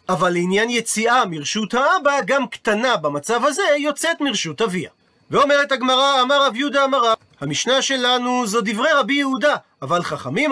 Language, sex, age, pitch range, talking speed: Hebrew, male, 40-59, 205-275 Hz, 150 wpm